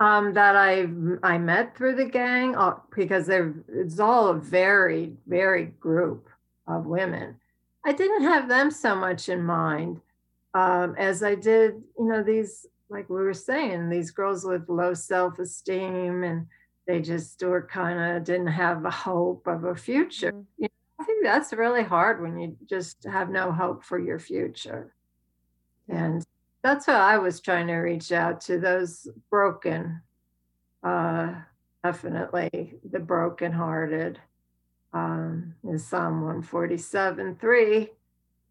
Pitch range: 165-195 Hz